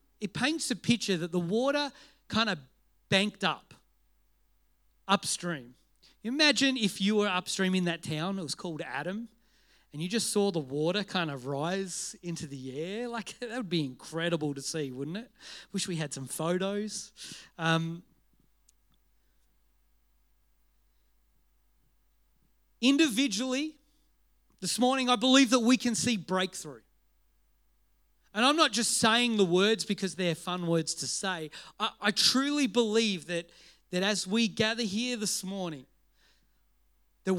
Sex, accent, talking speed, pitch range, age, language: male, Australian, 140 wpm, 140-230 Hz, 40-59, English